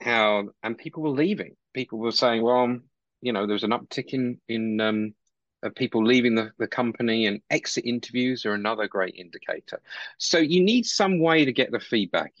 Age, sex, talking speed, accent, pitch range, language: 40-59, male, 185 wpm, British, 100-125 Hz, English